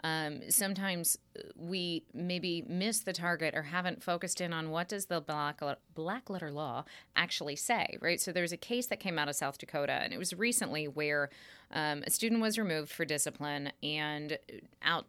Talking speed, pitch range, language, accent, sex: 185 wpm, 145-185 Hz, English, American, female